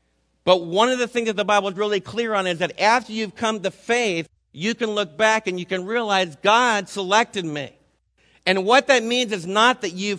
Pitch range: 180-220 Hz